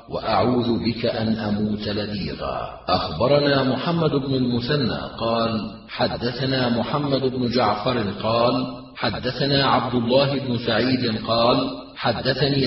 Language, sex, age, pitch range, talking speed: Arabic, male, 40-59, 120-140 Hz, 105 wpm